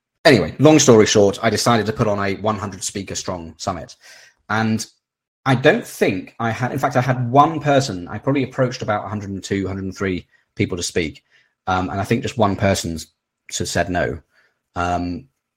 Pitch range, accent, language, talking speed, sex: 95-130 Hz, British, English, 175 wpm, male